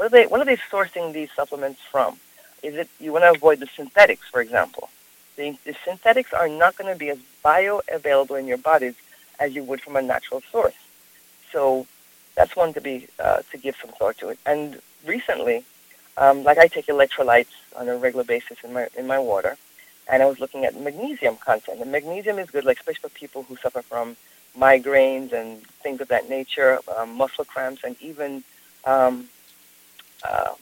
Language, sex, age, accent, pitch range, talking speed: English, female, 40-59, American, 135-205 Hz, 195 wpm